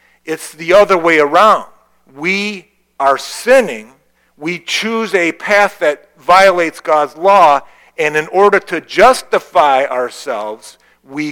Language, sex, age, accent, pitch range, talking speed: English, male, 50-69, American, 125-175 Hz, 120 wpm